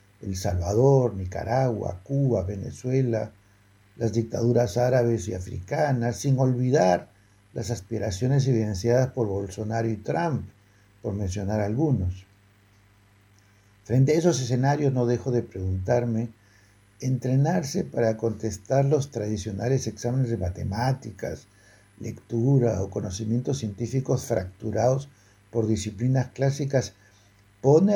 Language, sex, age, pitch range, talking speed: Spanish, male, 60-79, 100-130 Hz, 100 wpm